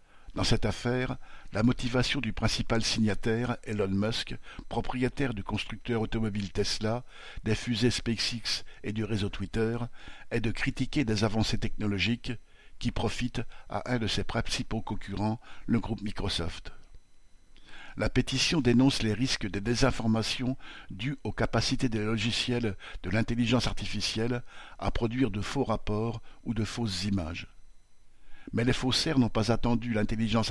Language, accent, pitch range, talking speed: French, French, 105-120 Hz, 140 wpm